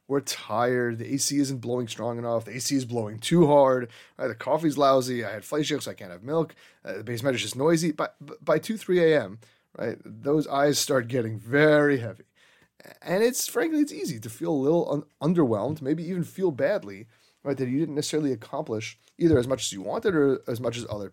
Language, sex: English, male